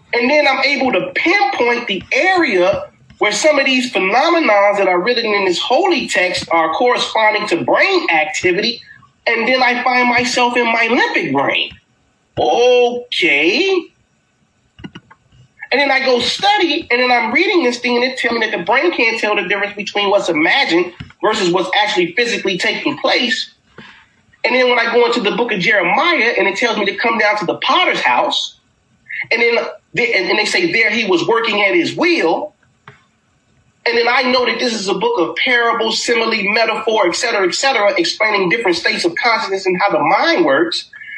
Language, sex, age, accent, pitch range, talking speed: English, male, 30-49, American, 205-280 Hz, 180 wpm